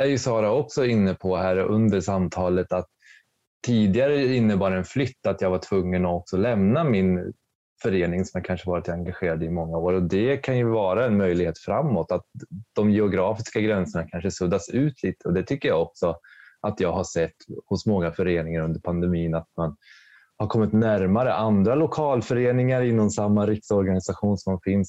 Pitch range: 90-105 Hz